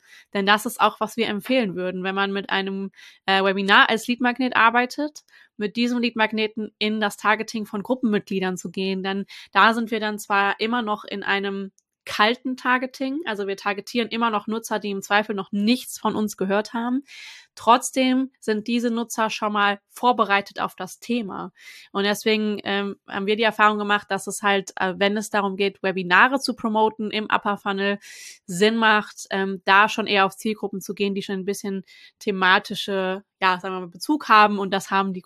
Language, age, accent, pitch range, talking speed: German, 20-39, German, 195-225 Hz, 190 wpm